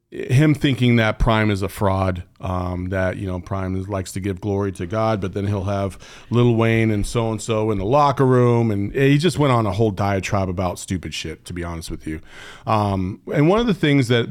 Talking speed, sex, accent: 225 wpm, male, American